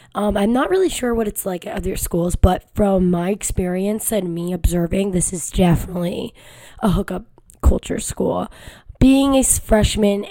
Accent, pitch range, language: American, 180-225 Hz, English